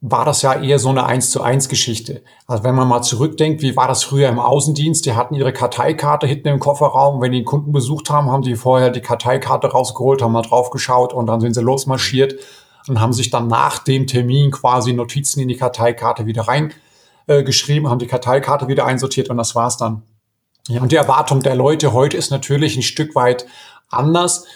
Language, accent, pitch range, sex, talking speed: German, German, 125-150 Hz, male, 205 wpm